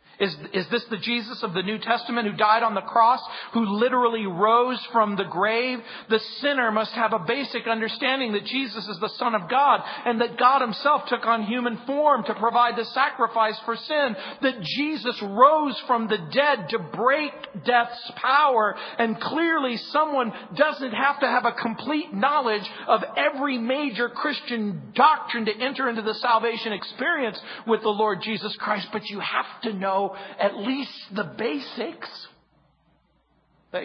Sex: male